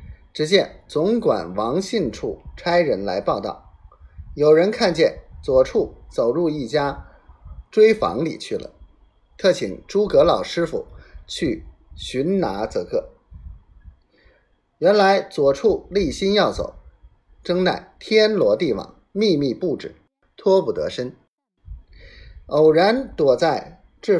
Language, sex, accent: Chinese, male, native